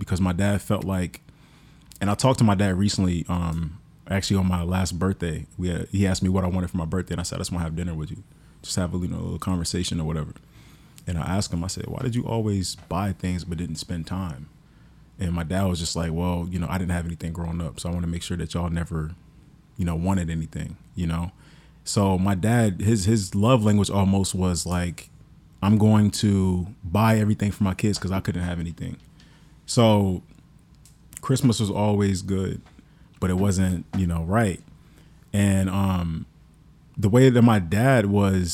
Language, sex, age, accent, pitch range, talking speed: English, male, 30-49, American, 90-115 Hz, 215 wpm